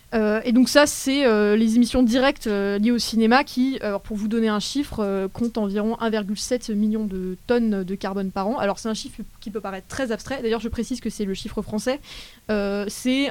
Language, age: French, 20-39